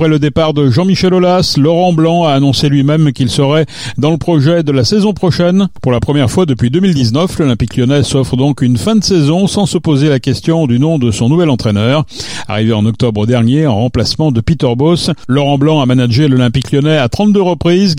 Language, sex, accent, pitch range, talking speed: French, male, French, 125-165 Hz, 210 wpm